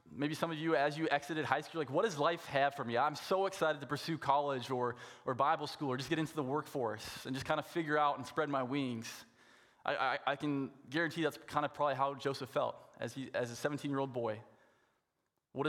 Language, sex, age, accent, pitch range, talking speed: English, male, 20-39, American, 120-145 Hz, 235 wpm